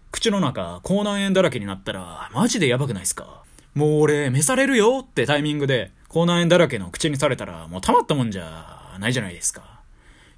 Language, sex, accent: Japanese, male, native